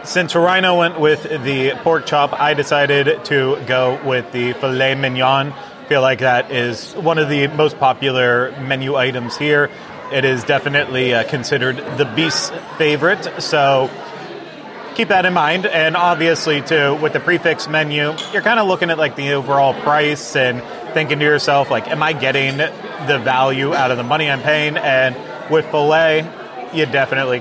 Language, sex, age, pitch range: English, male, 30-49, 135-165 Hz